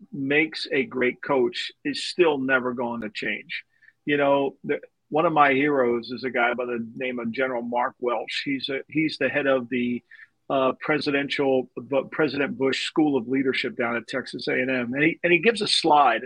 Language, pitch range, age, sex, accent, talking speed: English, 130-165 Hz, 50-69, male, American, 195 wpm